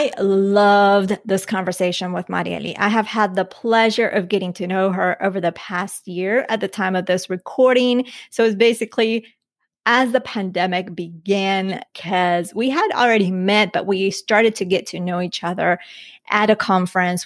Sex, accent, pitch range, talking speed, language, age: female, American, 185-230 Hz, 175 wpm, English, 30-49